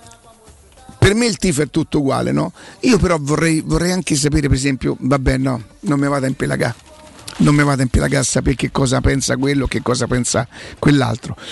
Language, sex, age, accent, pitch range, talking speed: Italian, male, 50-69, native, 135-155 Hz, 170 wpm